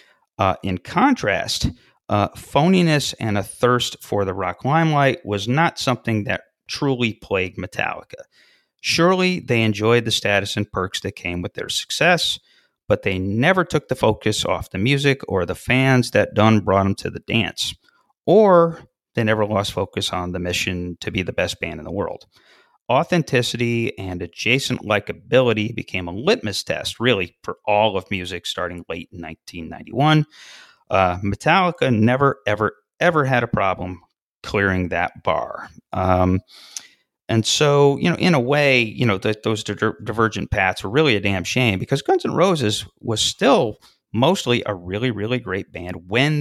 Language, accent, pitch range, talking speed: English, American, 95-135 Hz, 160 wpm